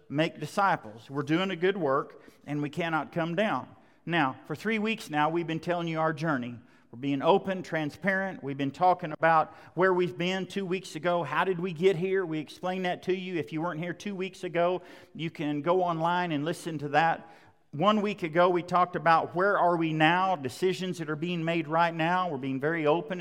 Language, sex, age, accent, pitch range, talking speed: English, male, 50-69, American, 150-185 Hz, 215 wpm